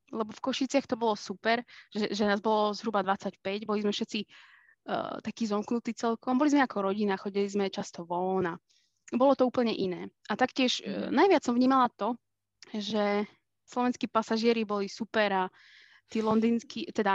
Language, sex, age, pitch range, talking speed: Slovak, female, 20-39, 200-255 Hz, 165 wpm